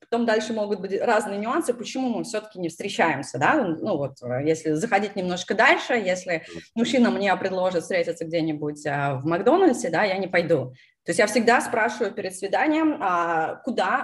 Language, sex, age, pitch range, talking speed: Russian, female, 20-39, 165-240 Hz, 165 wpm